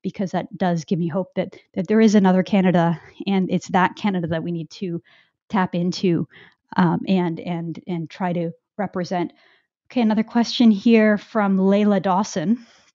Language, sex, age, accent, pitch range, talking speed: English, female, 30-49, American, 185-225 Hz, 160 wpm